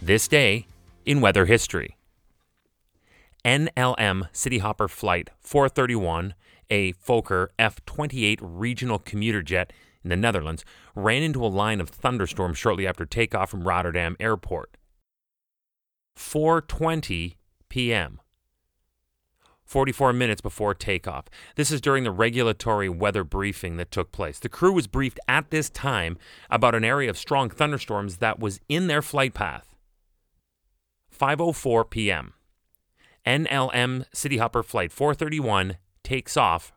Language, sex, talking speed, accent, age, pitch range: English, male, 120 wpm, American, 30-49, 90-130 Hz